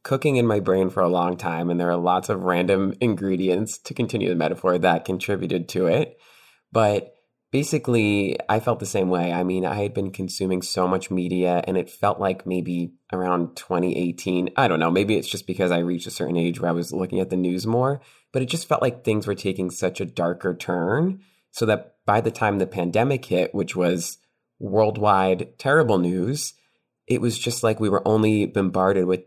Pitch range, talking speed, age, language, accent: 90-110 Hz, 205 wpm, 20-39, English, American